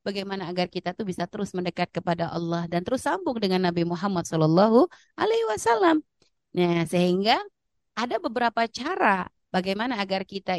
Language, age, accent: Indonesian, 20-39, native